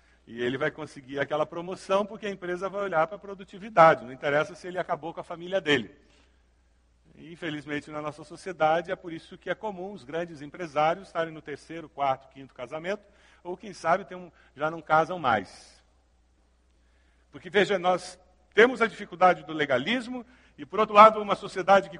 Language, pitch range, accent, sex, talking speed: Portuguese, 145-210 Hz, Brazilian, male, 185 wpm